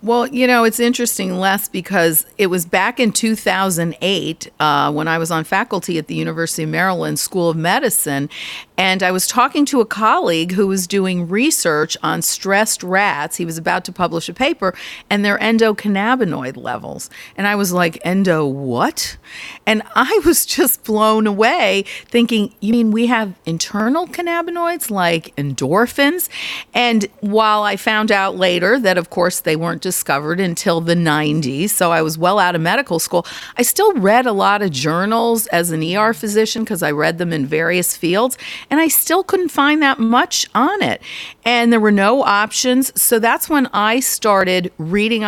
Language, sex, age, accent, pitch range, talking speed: English, female, 50-69, American, 170-230 Hz, 180 wpm